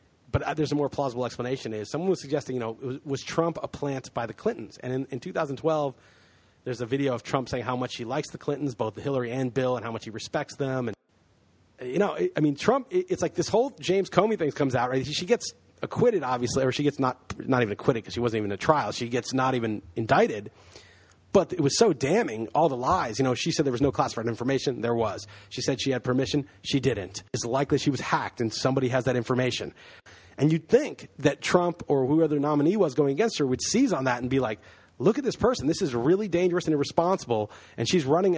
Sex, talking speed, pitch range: male, 240 wpm, 125-185 Hz